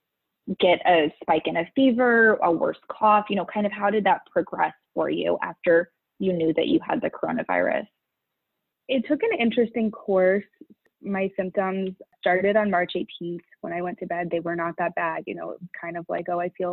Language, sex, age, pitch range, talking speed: English, female, 20-39, 165-195 Hz, 200 wpm